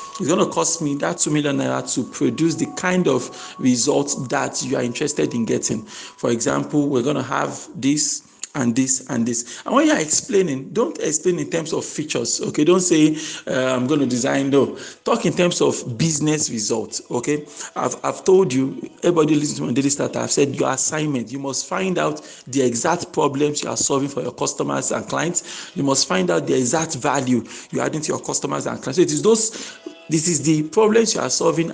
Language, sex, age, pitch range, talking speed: English, male, 40-59, 135-170 Hz, 205 wpm